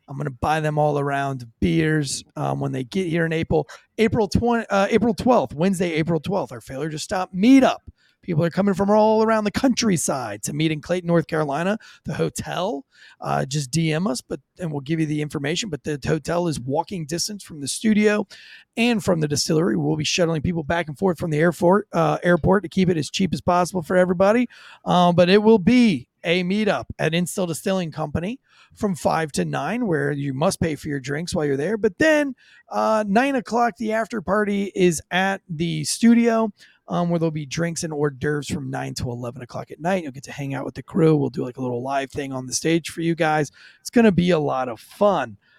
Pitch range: 150-205 Hz